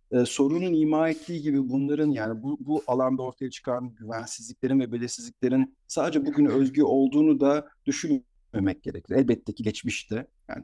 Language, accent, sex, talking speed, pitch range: Turkish, native, male, 140 wpm, 100-130 Hz